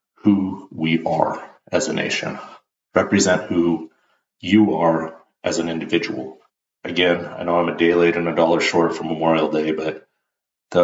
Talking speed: 160 wpm